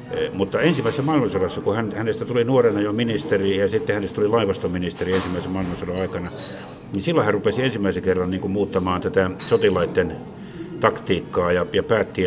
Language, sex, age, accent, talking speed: Finnish, male, 60-79, native, 145 wpm